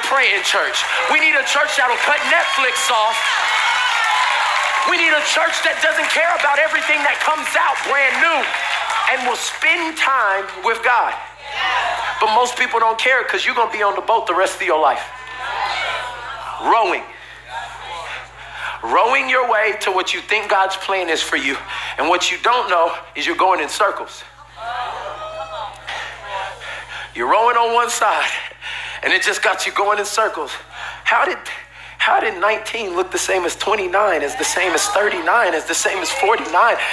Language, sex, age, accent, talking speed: English, male, 50-69, American, 170 wpm